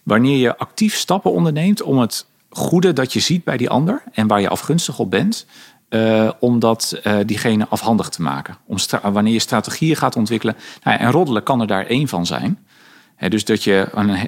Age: 40-59